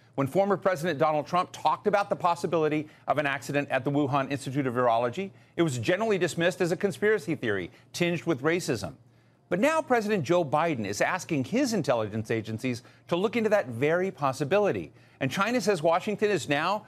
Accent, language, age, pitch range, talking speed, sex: American, English, 50-69, 130-180 Hz, 180 wpm, male